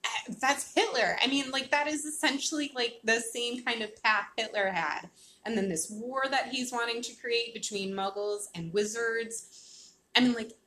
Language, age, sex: English, 20-39, female